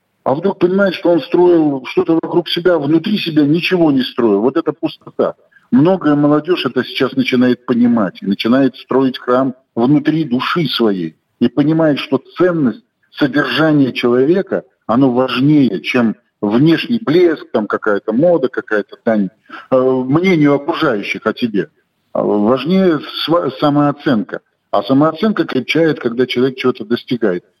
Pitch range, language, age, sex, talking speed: 130-180 Hz, Russian, 50-69, male, 130 wpm